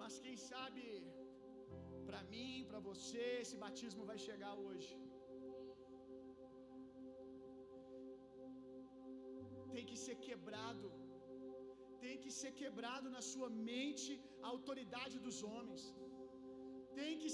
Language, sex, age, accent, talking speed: Gujarati, male, 50-69, Brazilian, 100 wpm